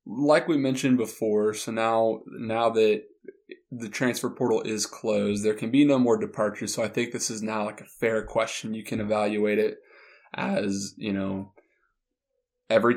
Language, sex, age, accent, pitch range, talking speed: English, male, 20-39, American, 105-125 Hz, 170 wpm